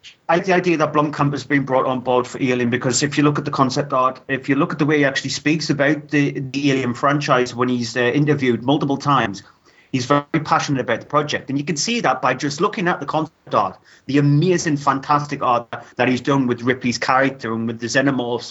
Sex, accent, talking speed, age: male, British, 235 wpm, 30-49